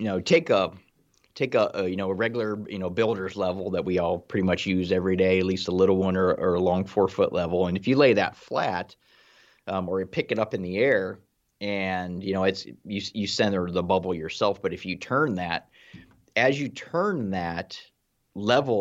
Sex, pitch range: male, 90-105 Hz